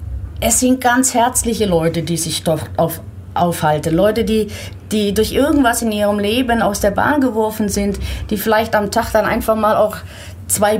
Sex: female